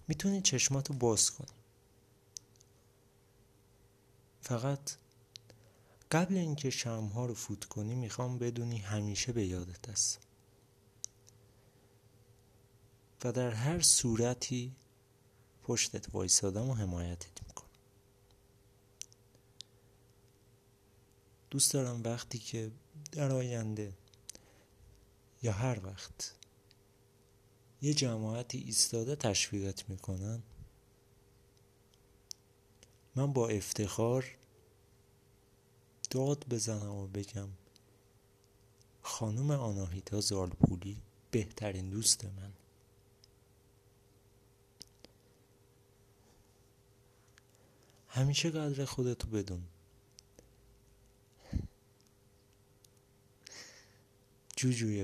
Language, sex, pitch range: Persian, male, 100-125 Hz